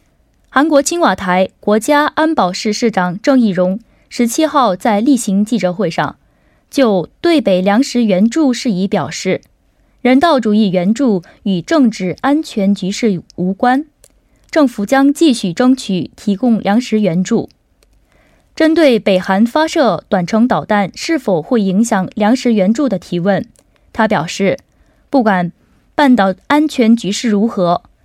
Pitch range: 195-275 Hz